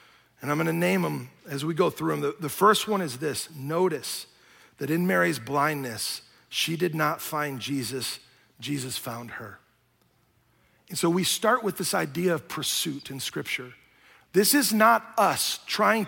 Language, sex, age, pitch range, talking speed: English, male, 40-59, 150-215 Hz, 170 wpm